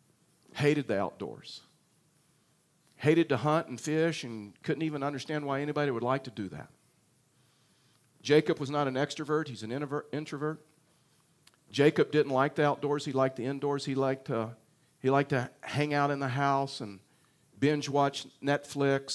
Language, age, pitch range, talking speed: English, 50-69, 125-150 Hz, 160 wpm